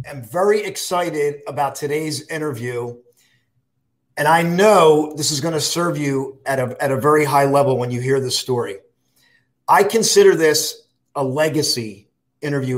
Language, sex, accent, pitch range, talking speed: English, male, American, 135-190 Hz, 155 wpm